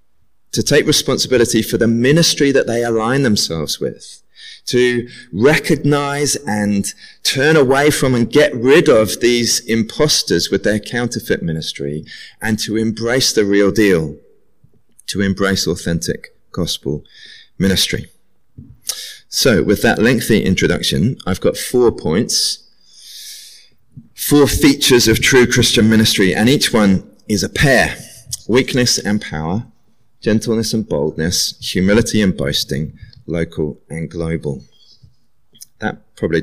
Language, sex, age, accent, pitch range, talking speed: English, male, 30-49, British, 85-120 Hz, 120 wpm